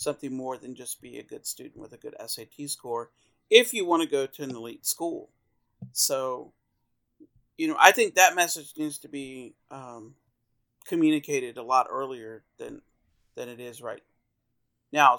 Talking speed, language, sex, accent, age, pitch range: 170 wpm, English, male, American, 50-69, 130-175 Hz